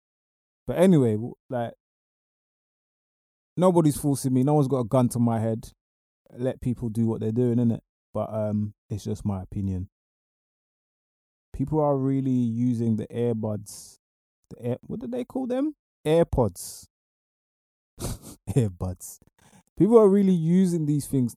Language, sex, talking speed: English, male, 135 wpm